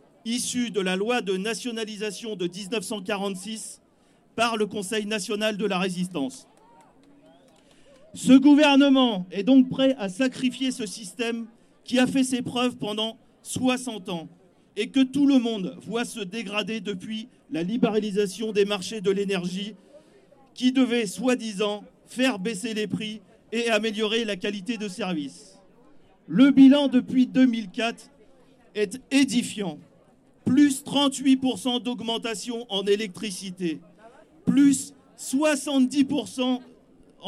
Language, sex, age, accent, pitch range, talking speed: French, male, 40-59, French, 205-255 Hz, 120 wpm